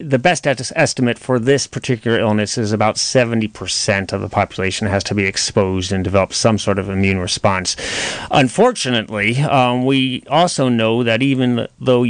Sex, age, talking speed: male, 30-49, 165 wpm